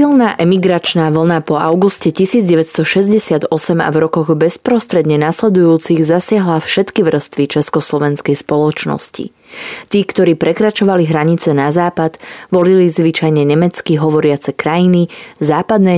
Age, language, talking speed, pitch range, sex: 20-39, Slovak, 105 wpm, 155-195 Hz, female